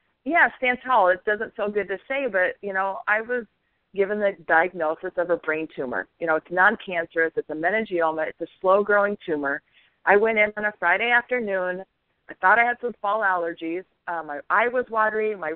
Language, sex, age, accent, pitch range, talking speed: English, female, 40-59, American, 170-210 Hz, 195 wpm